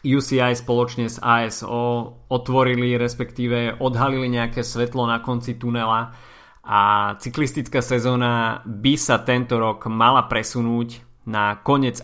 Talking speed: 115 wpm